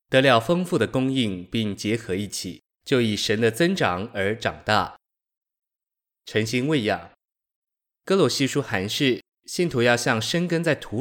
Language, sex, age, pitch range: Chinese, male, 20-39, 105-135 Hz